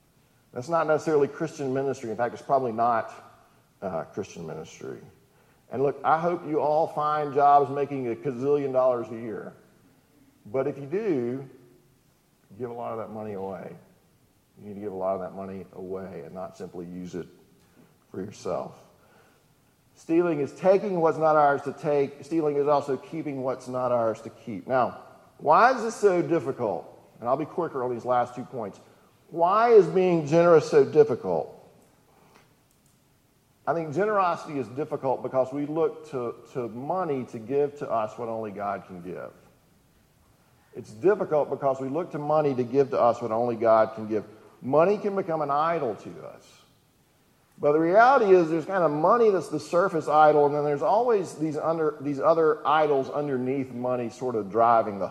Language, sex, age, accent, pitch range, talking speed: English, male, 40-59, American, 120-155 Hz, 175 wpm